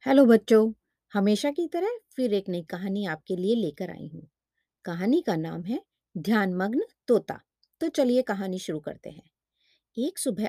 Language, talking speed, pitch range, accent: Hindi, 160 wpm, 180-255 Hz, native